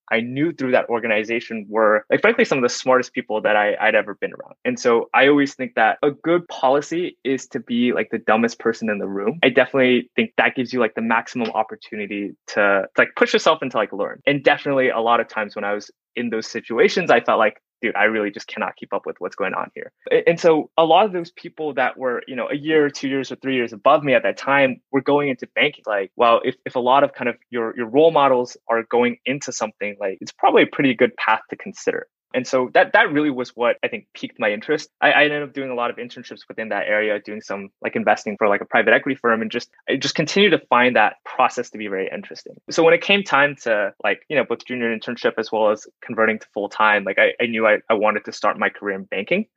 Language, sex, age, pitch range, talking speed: English, male, 20-39, 110-145 Hz, 260 wpm